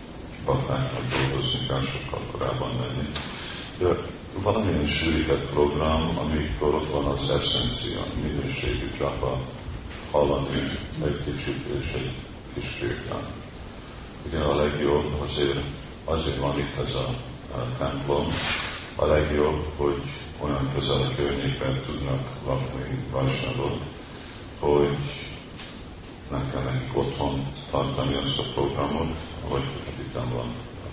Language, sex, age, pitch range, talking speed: Hungarian, male, 50-69, 65-75 Hz, 115 wpm